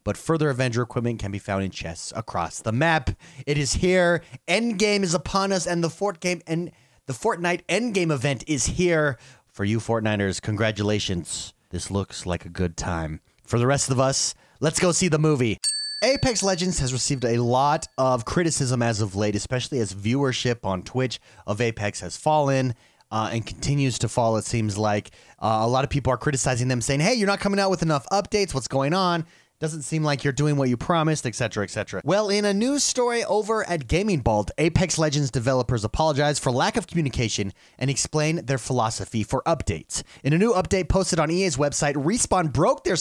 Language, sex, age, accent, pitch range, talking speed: English, male, 30-49, American, 110-165 Hz, 195 wpm